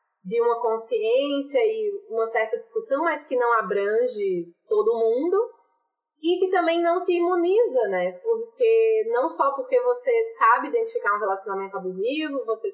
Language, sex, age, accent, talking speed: Portuguese, female, 20-39, Brazilian, 145 wpm